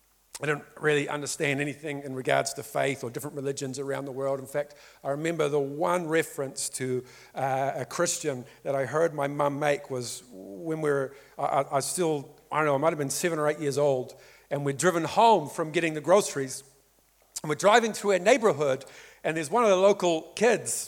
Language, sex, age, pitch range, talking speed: English, male, 50-69, 150-240 Hz, 205 wpm